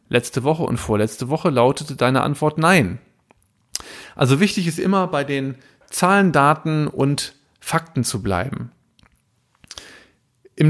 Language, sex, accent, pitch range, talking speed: German, male, German, 125-170 Hz, 125 wpm